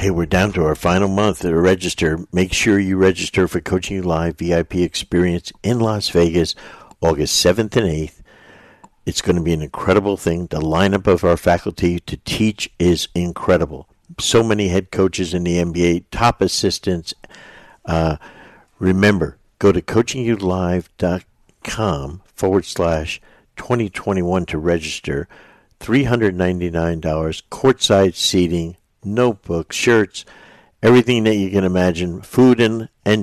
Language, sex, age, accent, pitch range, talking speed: English, male, 60-79, American, 85-100 Hz, 135 wpm